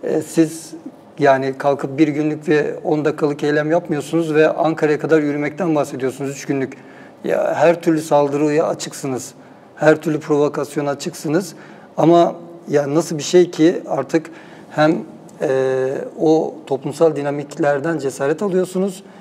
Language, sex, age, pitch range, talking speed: Turkish, male, 60-79, 145-170 Hz, 120 wpm